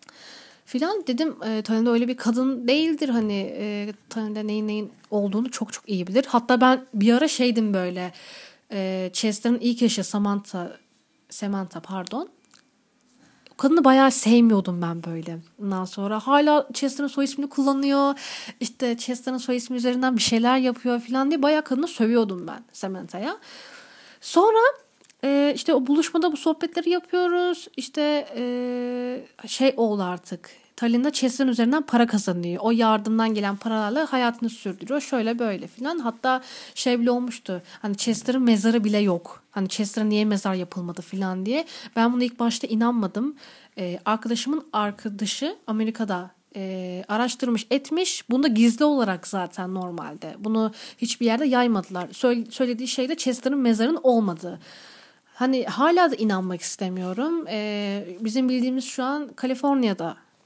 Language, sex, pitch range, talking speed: Turkish, female, 210-265 Hz, 135 wpm